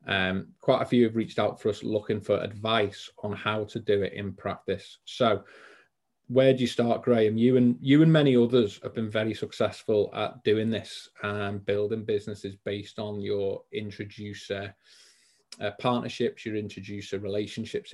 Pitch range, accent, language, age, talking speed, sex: 105-130 Hz, British, English, 30-49, 165 wpm, male